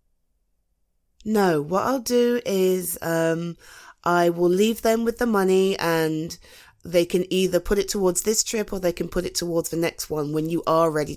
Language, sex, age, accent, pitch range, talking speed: English, female, 30-49, British, 160-220 Hz, 190 wpm